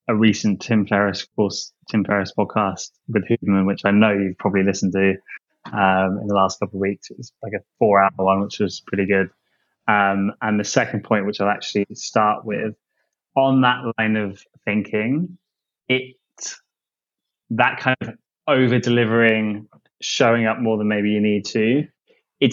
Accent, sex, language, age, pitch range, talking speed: British, male, English, 10-29, 110-135 Hz, 175 wpm